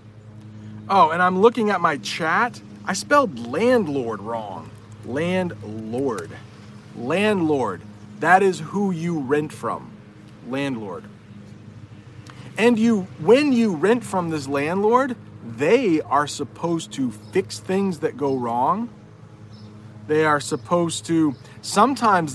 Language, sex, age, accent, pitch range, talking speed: English, male, 40-59, American, 110-180 Hz, 115 wpm